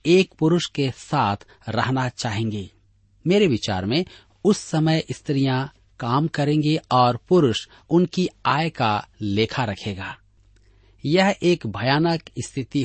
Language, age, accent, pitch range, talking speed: Hindi, 40-59, native, 100-155 Hz, 115 wpm